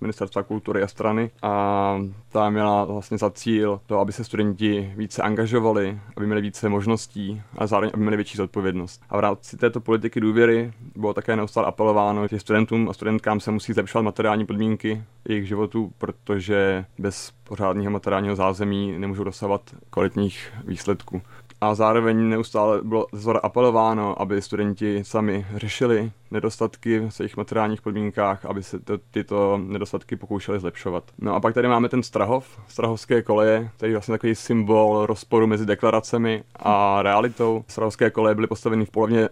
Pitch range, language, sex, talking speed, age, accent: 100-110 Hz, Czech, male, 155 wpm, 20-39, native